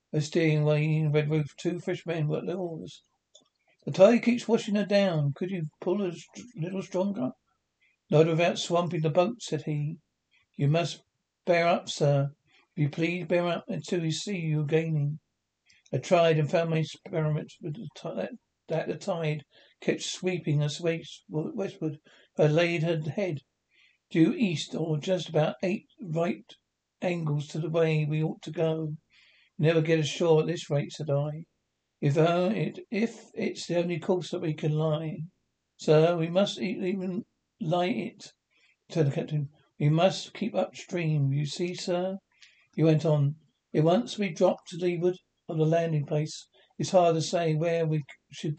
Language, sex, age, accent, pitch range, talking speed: English, male, 60-79, British, 155-180 Hz, 170 wpm